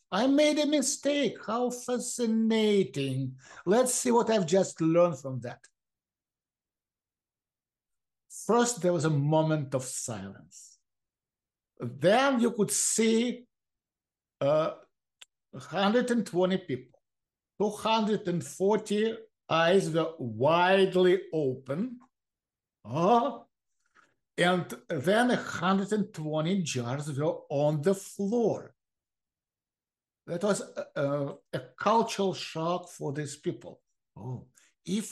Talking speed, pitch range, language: 90 wpm, 140-215 Hz, English